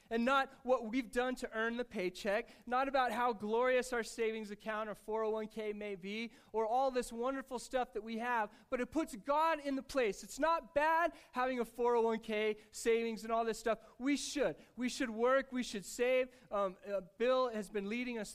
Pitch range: 210-255 Hz